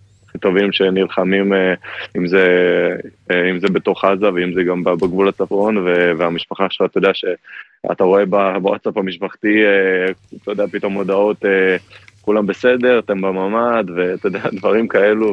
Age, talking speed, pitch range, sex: 20-39, 135 wpm, 90-100 Hz, male